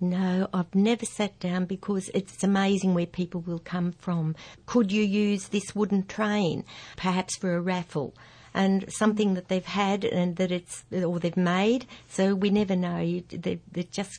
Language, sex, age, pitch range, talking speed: English, female, 60-79, 170-190 Hz, 180 wpm